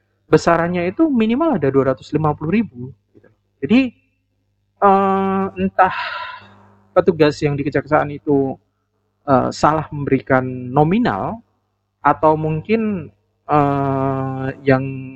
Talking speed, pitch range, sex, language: 65 wpm, 125-155 Hz, male, Indonesian